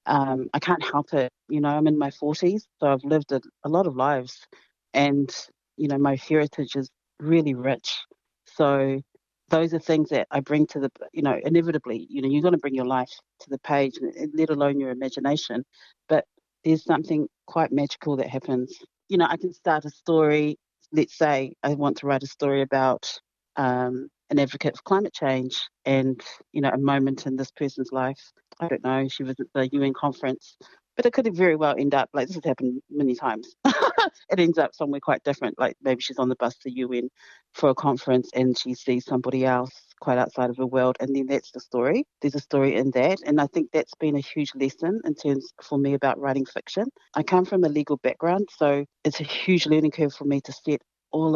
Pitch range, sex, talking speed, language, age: 130-155 Hz, female, 215 wpm, English, 40-59